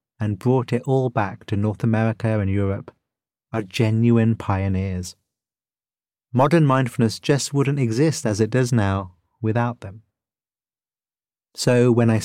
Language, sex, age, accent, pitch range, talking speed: English, male, 30-49, British, 100-130 Hz, 130 wpm